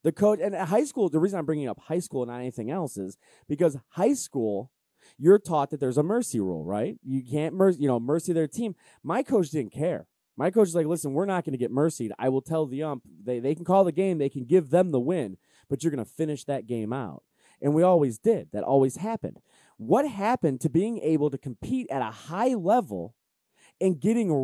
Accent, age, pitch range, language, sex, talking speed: American, 20-39, 135-195 Hz, English, male, 240 wpm